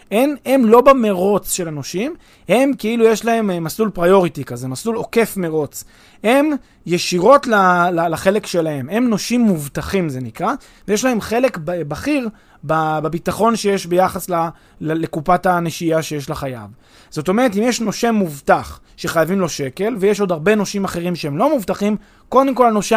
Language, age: Hebrew, 20-39